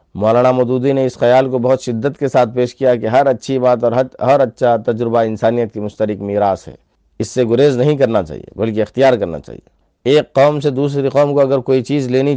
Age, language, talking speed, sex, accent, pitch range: 50-69, English, 220 wpm, male, Indian, 115-135 Hz